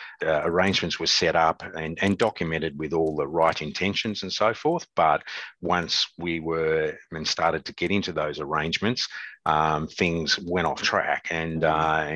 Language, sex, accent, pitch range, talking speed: English, male, Australian, 80-90 Hz, 170 wpm